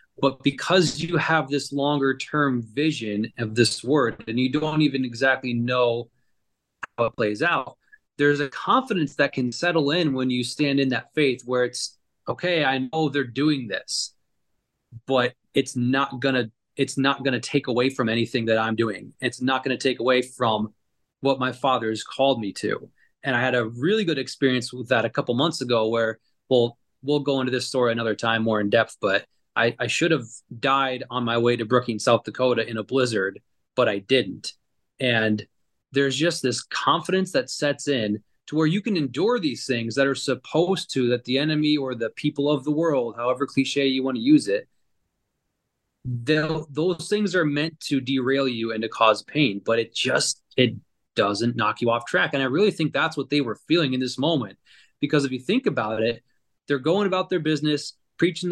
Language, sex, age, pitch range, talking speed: English, male, 30-49, 120-150 Hz, 200 wpm